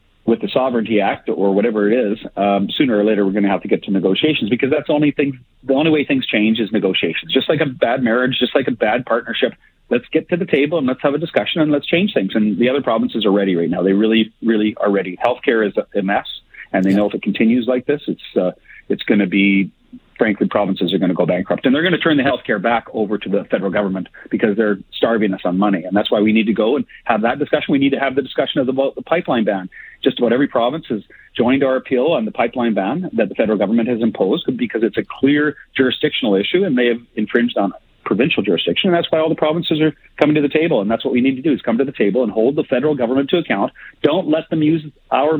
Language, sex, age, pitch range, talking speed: English, male, 40-59, 105-150 Hz, 265 wpm